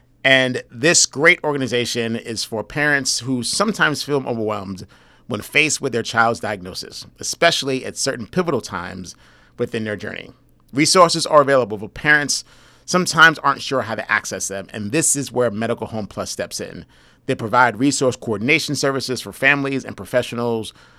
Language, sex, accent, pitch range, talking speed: English, male, American, 110-145 Hz, 155 wpm